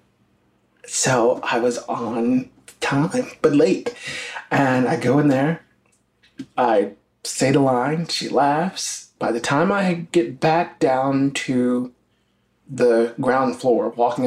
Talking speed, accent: 125 wpm, American